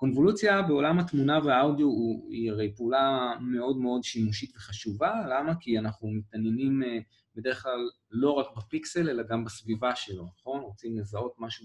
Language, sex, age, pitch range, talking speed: Hebrew, male, 20-39, 110-145 Hz, 145 wpm